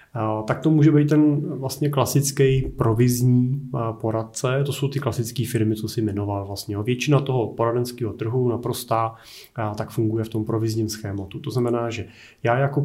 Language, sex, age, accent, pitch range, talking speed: Czech, male, 20-39, native, 110-125 Hz, 160 wpm